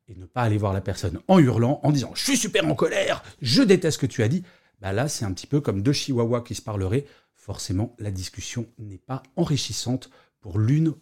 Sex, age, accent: male, 40-59, French